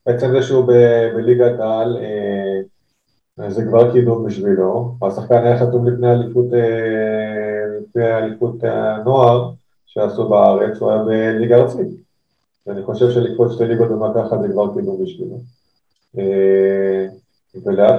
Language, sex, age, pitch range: Hebrew, male, 20-39, 100-120 Hz